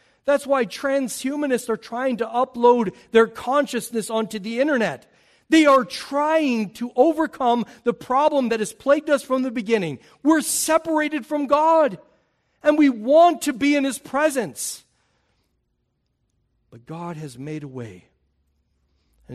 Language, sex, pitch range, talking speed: English, male, 155-235 Hz, 140 wpm